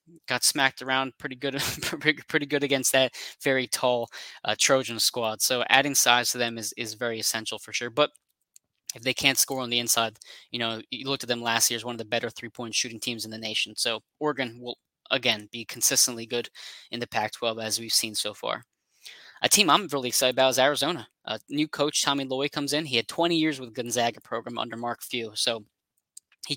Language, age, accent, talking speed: English, 10-29, American, 215 wpm